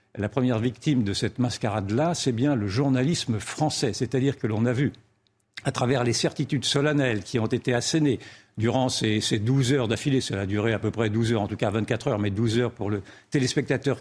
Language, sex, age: French, male, 50-69